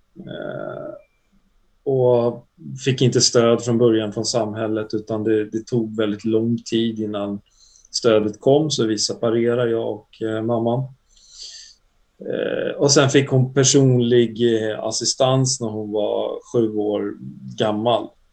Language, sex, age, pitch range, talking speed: Swedish, male, 30-49, 110-130 Hz, 120 wpm